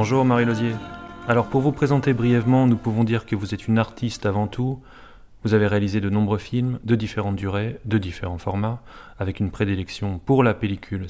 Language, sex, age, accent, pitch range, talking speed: French, male, 30-49, French, 100-120 Hz, 190 wpm